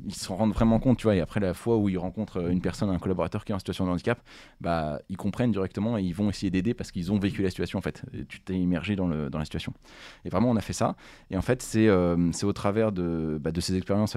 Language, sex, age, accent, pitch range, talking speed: French, male, 20-39, French, 90-105 Hz, 290 wpm